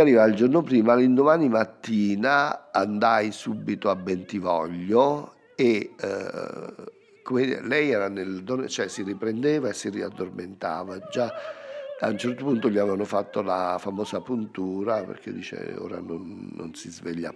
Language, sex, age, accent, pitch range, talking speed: Italian, male, 50-69, native, 105-150 Hz, 135 wpm